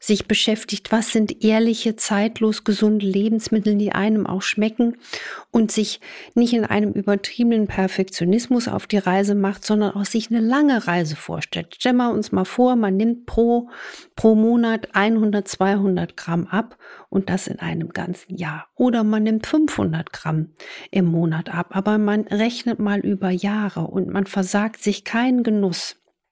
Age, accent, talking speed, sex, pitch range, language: 50-69, German, 160 wpm, female, 185-225 Hz, German